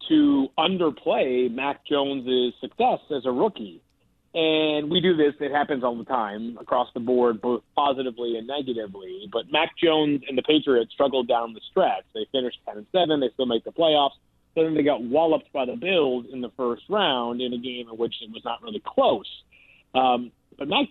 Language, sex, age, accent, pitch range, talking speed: English, male, 40-59, American, 125-160 Hz, 195 wpm